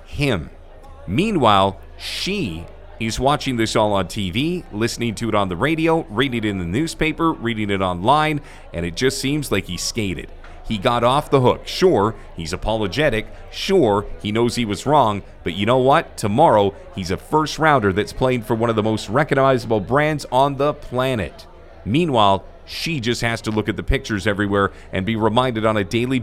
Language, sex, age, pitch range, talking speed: English, male, 40-59, 95-140 Hz, 185 wpm